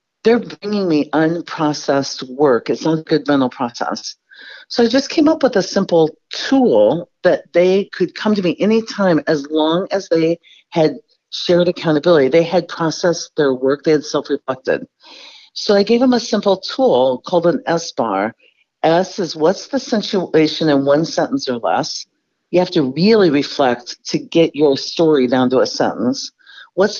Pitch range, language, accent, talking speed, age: 150-215 Hz, English, American, 170 wpm, 50-69